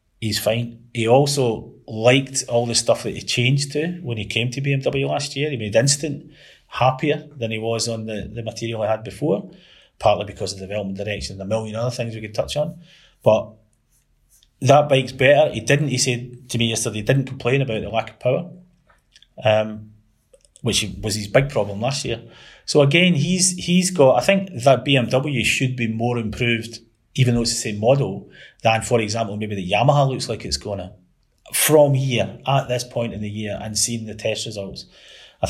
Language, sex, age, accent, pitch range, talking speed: English, male, 30-49, British, 110-130 Hz, 200 wpm